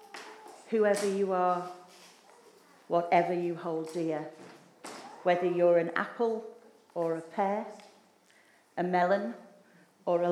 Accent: British